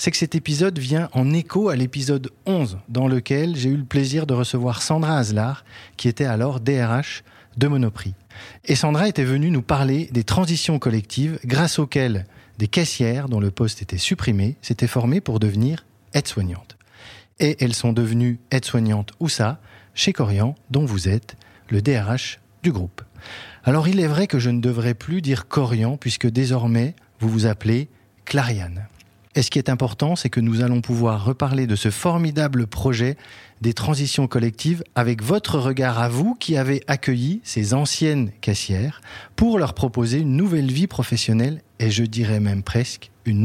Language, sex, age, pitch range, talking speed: French, male, 40-59, 110-145 Hz, 170 wpm